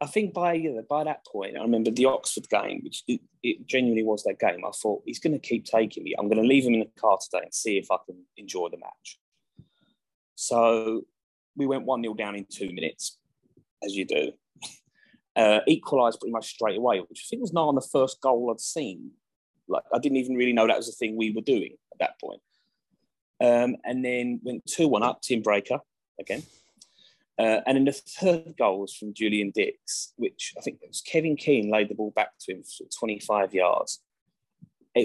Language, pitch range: English, 105-145 Hz